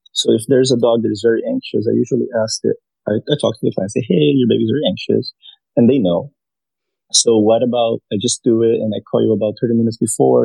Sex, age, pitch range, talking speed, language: male, 30-49, 115-135 Hz, 245 wpm, English